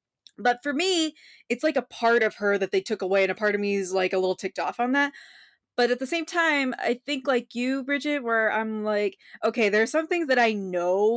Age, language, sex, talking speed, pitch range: 20-39, English, female, 255 wpm, 205-270 Hz